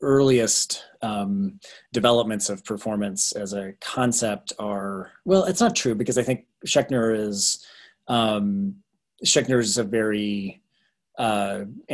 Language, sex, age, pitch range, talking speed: English, male, 30-49, 100-125 Hz, 120 wpm